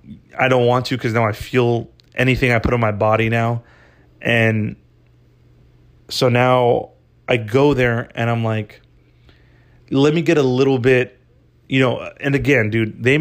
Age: 30-49